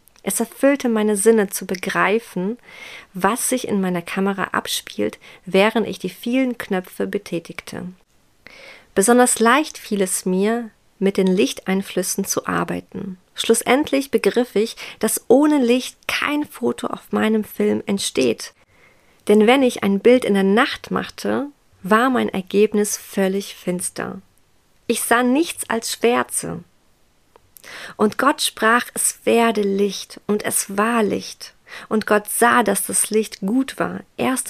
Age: 40-59